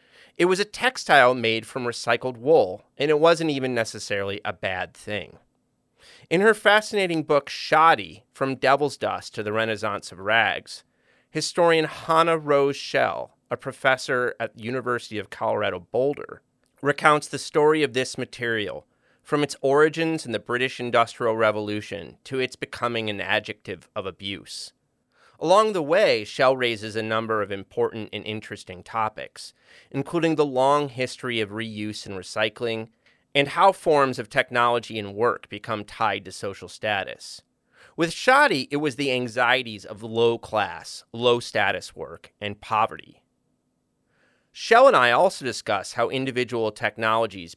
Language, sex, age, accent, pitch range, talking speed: English, male, 30-49, American, 110-145 Hz, 145 wpm